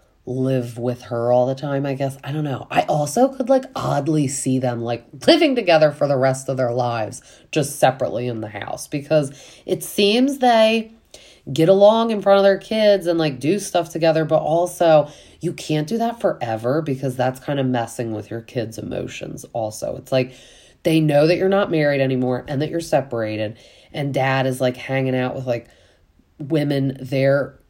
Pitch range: 125-160 Hz